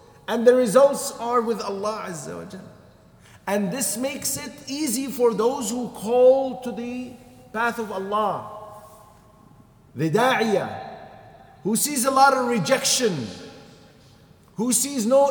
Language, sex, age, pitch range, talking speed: English, male, 50-69, 180-270 Hz, 120 wpm